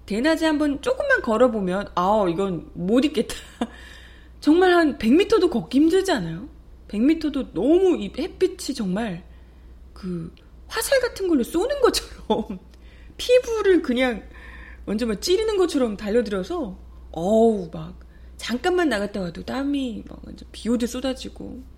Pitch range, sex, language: 180-295 Hz, female, Korean